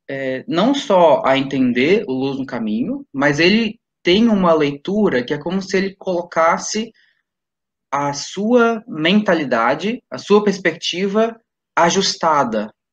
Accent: Brazilian